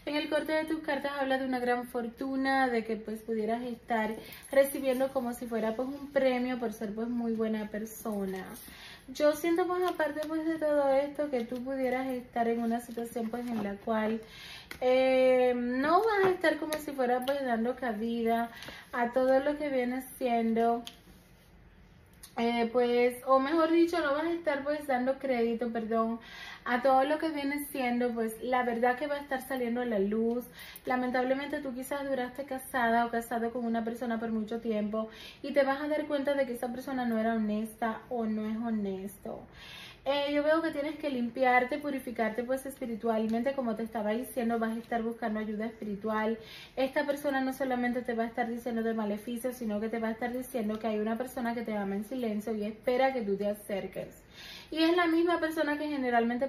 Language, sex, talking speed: Spanish, female, 195 wpm